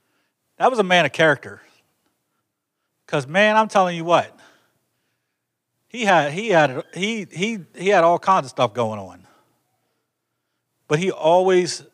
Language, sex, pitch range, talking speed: English, male, 130-175 Hz, 145 wpm